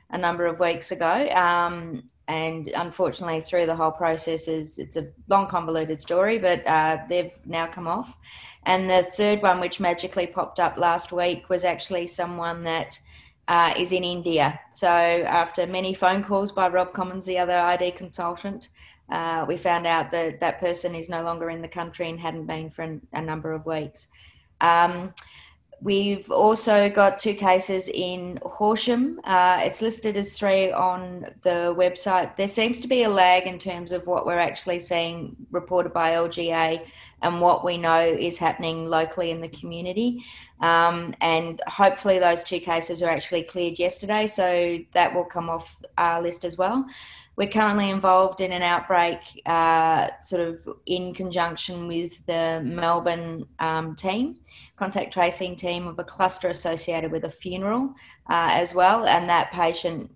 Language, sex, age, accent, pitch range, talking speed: English, female, 20-39, Australian, 165-185 Hz, 165 wpm